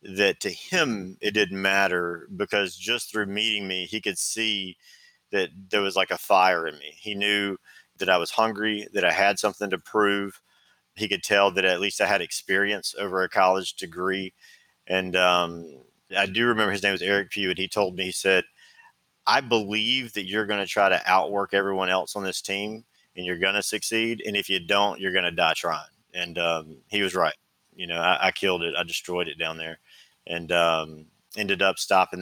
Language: English